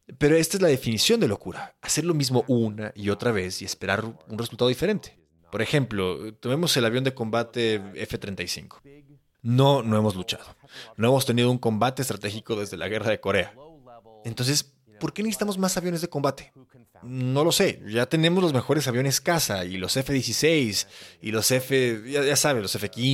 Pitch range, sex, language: 115-160 Hz, male, Spanish